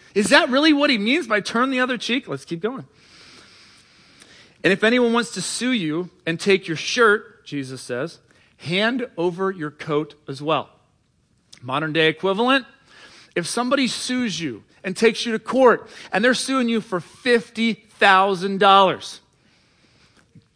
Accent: American